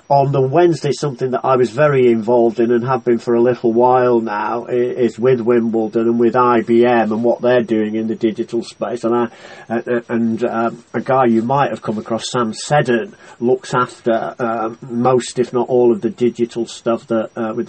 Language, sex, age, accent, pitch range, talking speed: English, male, 40-59, British, 115-125 Hz, 190 wpm